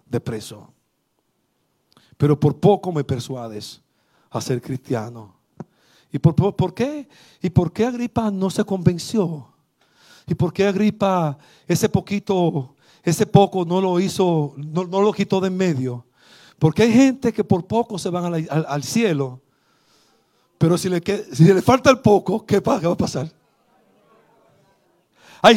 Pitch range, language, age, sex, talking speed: 145-215 Hz, Spanish, 50-69, male, 155 wpm